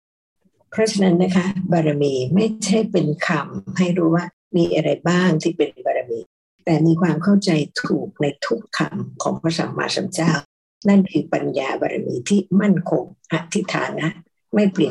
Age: 60-79